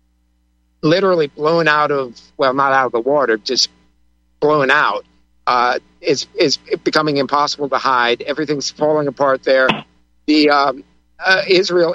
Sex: male